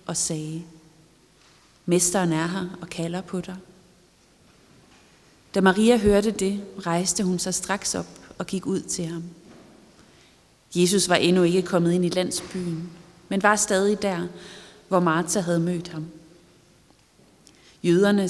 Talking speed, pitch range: 135 wpm, 170-195 Hz